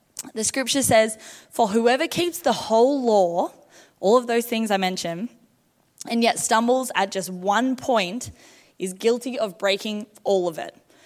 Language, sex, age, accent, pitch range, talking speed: English, female, 10-29, Australian, 195-240 Hz, 155 wpm